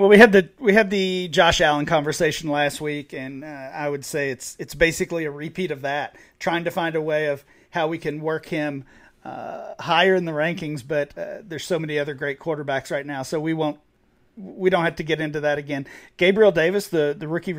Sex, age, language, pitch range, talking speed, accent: male, 40-59, English, 145-170 Hz, 225 wpm, American